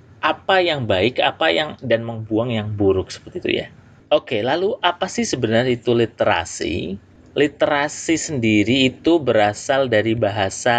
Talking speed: 140 wpm